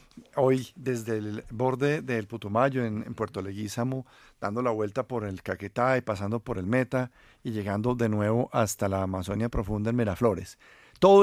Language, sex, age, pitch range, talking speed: Spanish, male, 50-69, 115-150 Hz, 170 wpm